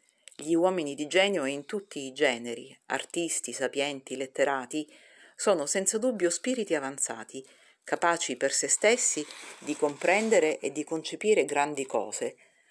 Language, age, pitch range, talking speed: Italian, 40-59, 135-195 Hz, 125 wpm